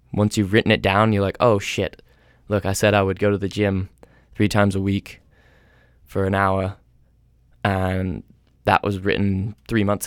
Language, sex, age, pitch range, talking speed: English, male, 10-29, 100-125 Hz, 185 wpm